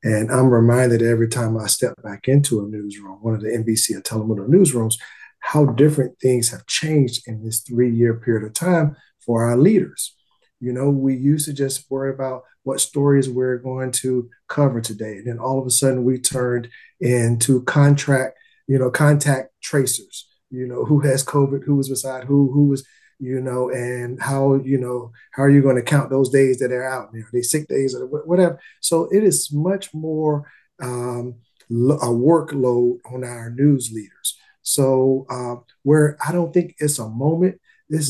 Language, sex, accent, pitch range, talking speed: English, male, American, 125-145 Hz, 185 wpm